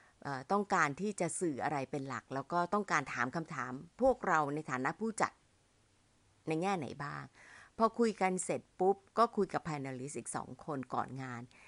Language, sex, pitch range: Thai, female, 145-215 Hz